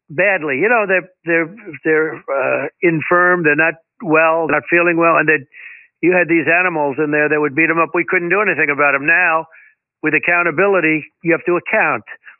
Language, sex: English, male